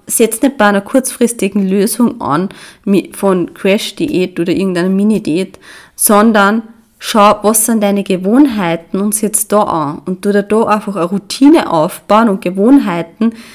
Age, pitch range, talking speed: 30-49, 190-230 Hz, 140 wpm